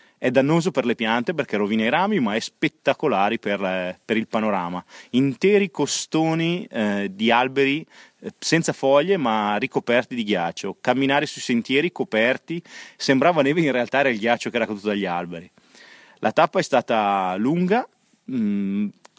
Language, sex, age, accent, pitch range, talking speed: English, male, 30-49, Italian, 105-155 Hz, 155 wpm